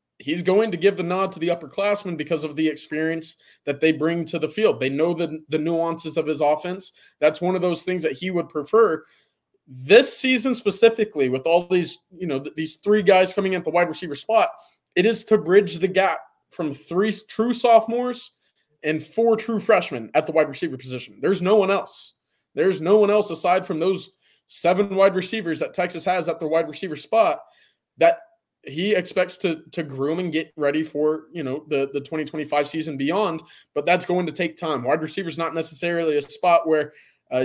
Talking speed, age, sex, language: 195 wpm, 20-39, male, English